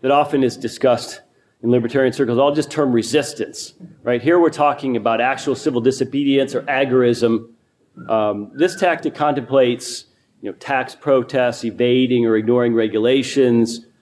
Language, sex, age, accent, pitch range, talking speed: English, male, 40-59, American, 115-145 Hz, 140 wpm